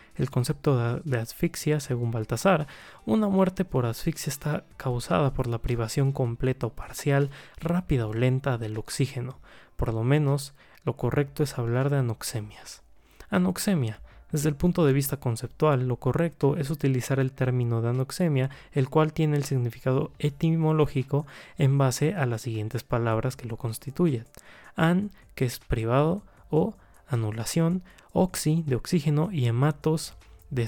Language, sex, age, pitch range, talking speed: Spanish, male, 20-39, 120-155 Hz, 145 wpm